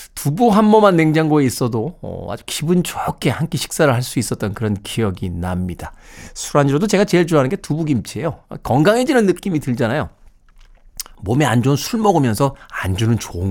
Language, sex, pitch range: Korean, male, 115-170 Hz